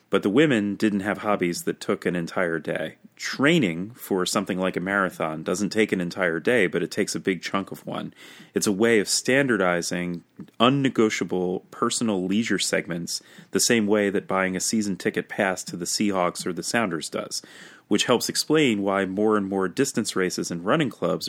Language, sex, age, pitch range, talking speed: English, male, 30-49, 95-120 Hz, 190 wpm